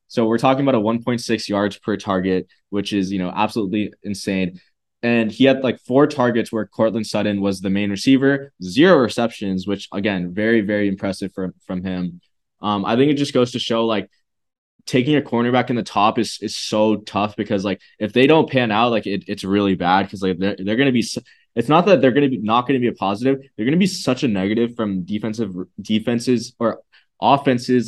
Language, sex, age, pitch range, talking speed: English, male, 20-39, 100-120 Hz, 215 wpm